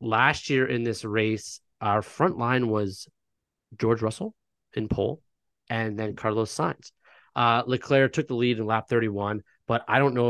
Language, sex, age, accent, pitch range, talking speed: English, male, 30-49, American, 105-120 Hz, 170 wpm